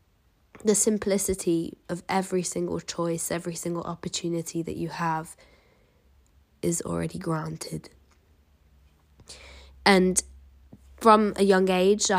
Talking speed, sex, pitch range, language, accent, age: 100 wpm, female, 160-195 Hz, English, British, 20-39